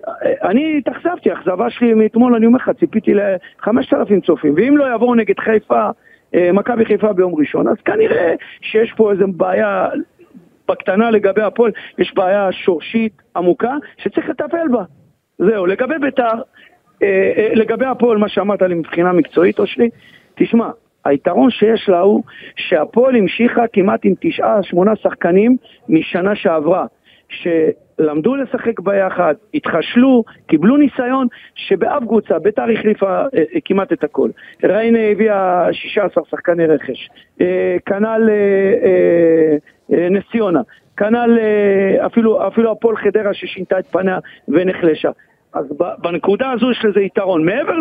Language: Hebrew